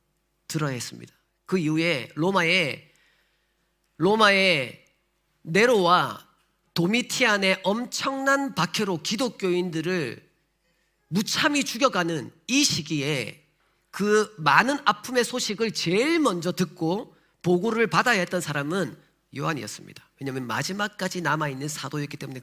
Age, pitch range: 40-59, 155-190 Hz